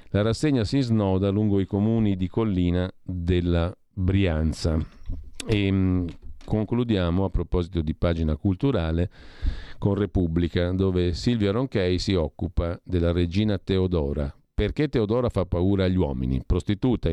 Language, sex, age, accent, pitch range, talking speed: Italian, male, 50-69, native, 85-115 Hz, 125 wpm